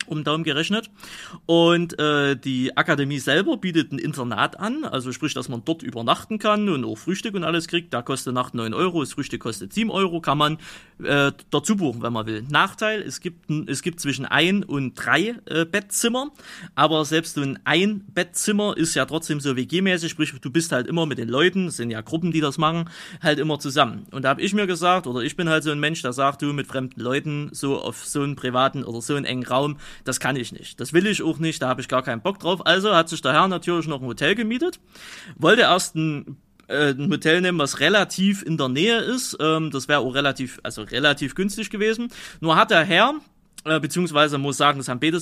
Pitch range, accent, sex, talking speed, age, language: 140-180 Hz, German, male, 225 wpm, 30-49, German